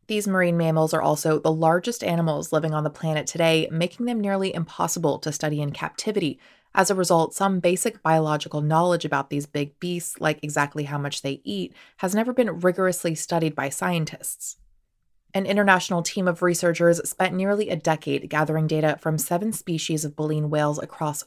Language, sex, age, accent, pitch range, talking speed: English, female, 20-39, American, 150-180 Hz, 180 wpm